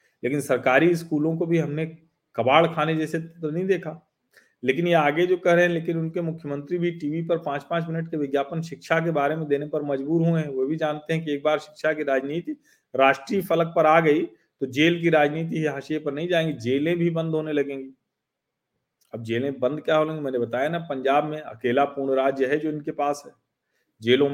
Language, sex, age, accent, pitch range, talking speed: Hindi, male, 40-59, native, 130-165 Hz, 215 wpm